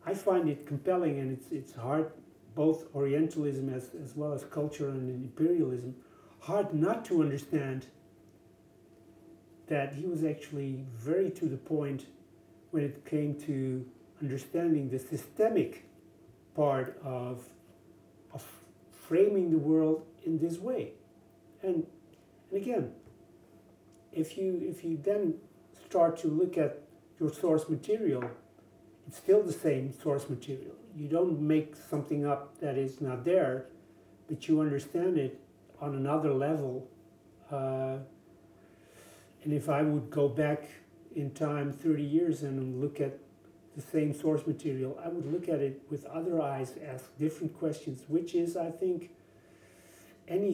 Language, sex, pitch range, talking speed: English, male, 135-165 Hz, 140 wpm